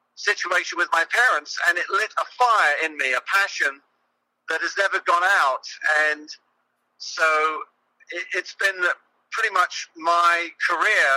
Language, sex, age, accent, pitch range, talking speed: English, male, 50-69, British, 155-185 Hz, 140 wpm